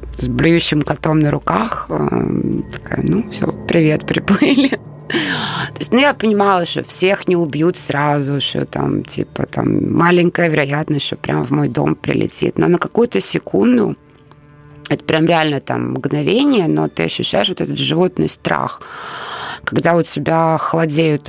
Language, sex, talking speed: Ukrainian, female, 145 wpm